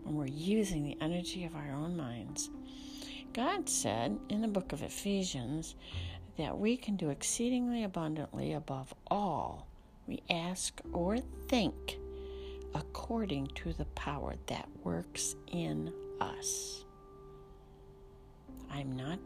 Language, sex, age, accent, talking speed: English, female, 60-79, American, 120 wpm